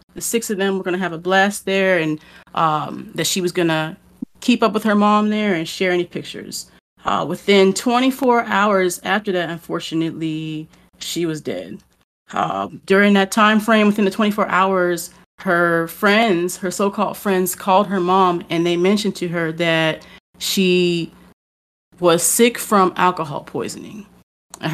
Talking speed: 165 wpm